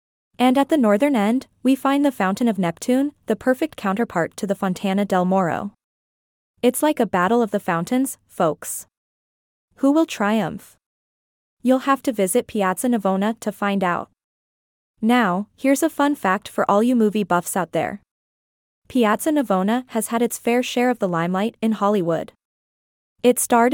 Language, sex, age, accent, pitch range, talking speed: English, female, 20-39, American, 200-250 Hz, 165 wpm